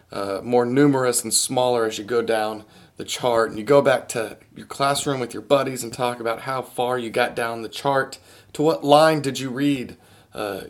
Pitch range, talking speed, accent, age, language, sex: 115-140 Hz, 215 wpm, American, 30-49, English, male